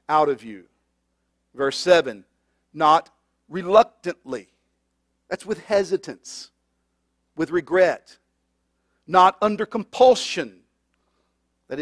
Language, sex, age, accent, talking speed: English, male, 50-69, American, 80 wpm